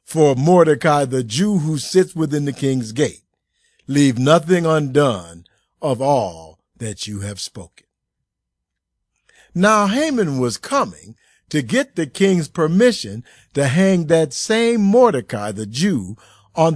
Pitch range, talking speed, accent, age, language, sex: 115-175 Hz, 130 wpm, American, 50-69, English, male